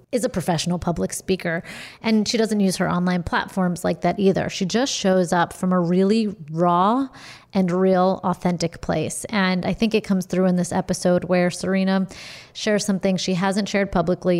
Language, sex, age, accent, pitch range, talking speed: English, female, 30-49, American, 180-200 Hz, 185 wpm